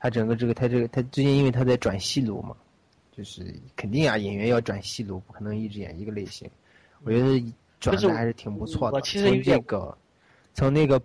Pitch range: 110-135 Hz